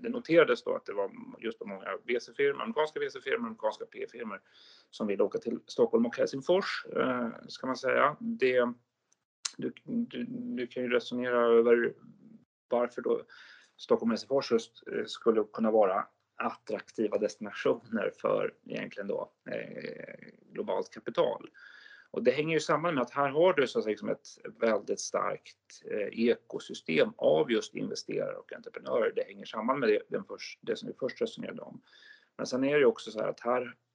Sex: male